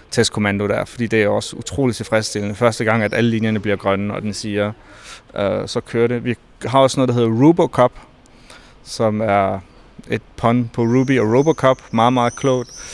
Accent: native